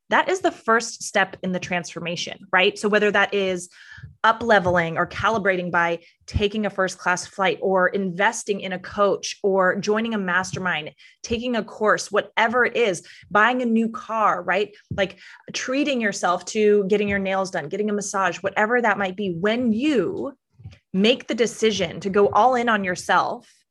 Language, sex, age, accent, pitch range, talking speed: English, female, 20-39, American, 185-225 Hz, 170 wpm